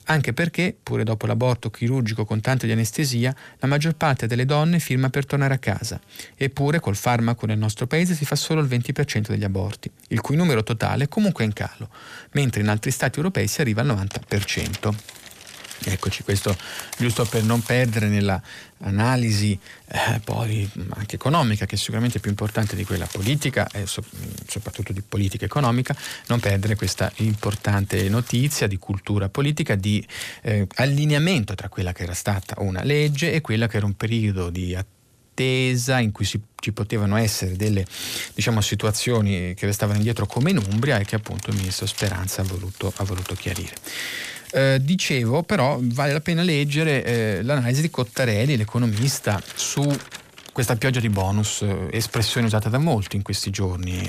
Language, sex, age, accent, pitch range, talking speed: Italian, male, 30-49, native, 100-130 Hz, 170 wpm